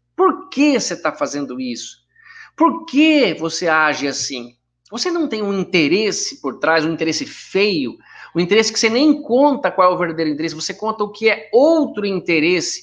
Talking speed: 185 wpm